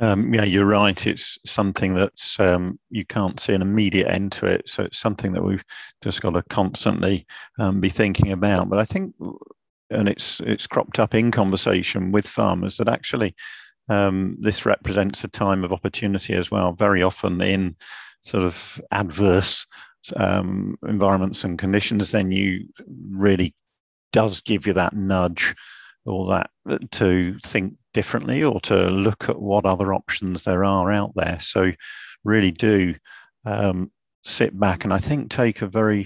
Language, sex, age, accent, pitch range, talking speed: English, male, 50-69, British, 90-105 Hz, 160 wpm